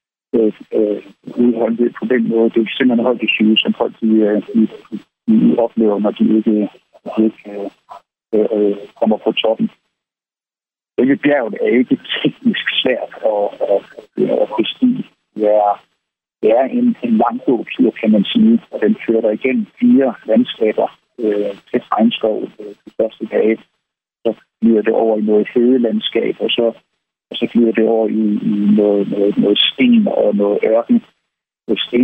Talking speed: 155 wpm